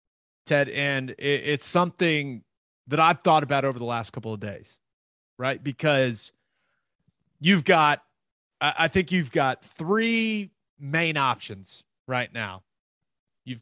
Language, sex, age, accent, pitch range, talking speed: English, male, 30-49, American, 120-165 Hz, 125 wpm